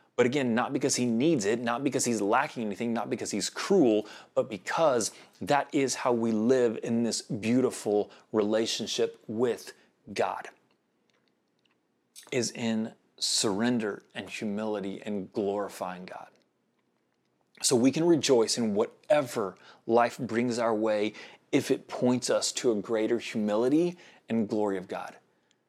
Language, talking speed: English, 140 wpm